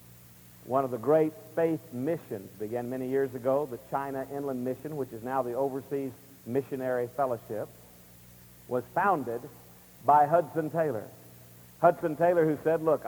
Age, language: 50-69, English